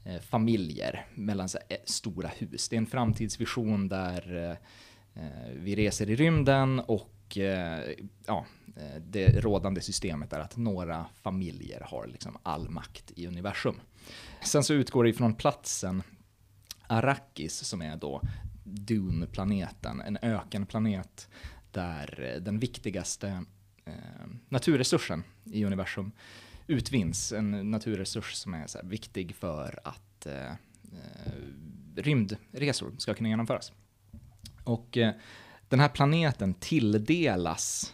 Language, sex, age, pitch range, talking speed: Swedish, male, 30-49, 95-115 Hz, 110 wpm